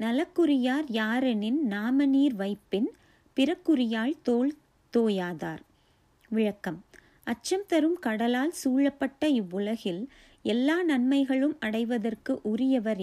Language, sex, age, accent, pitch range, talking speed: Tamil, female, 30-49, native, 220-275 Hz, 80 wpm